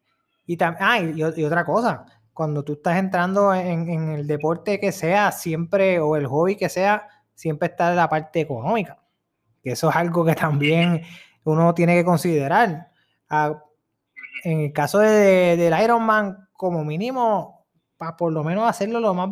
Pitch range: 155-195 Hz